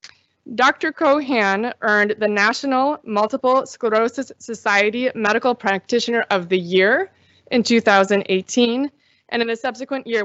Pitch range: 195-245 Hz